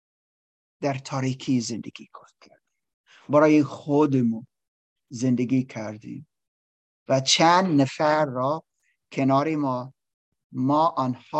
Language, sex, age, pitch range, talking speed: Persian, male, 50-69, 130-220 Hz, 85 wpm